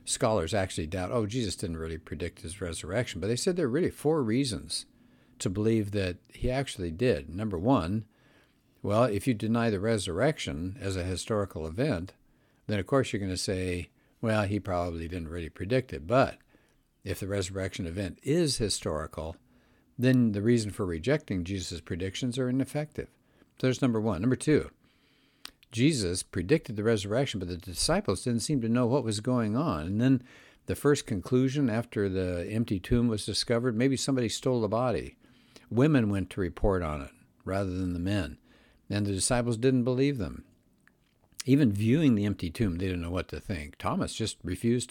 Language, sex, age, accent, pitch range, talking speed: English, male, 60-79, American, 95-125 Hz, 180 wpm